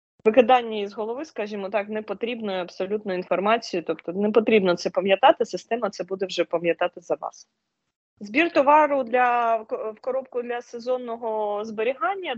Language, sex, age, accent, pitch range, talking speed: Ukrainian, female, 20-39, native, 190-245 Hz, 140 wpm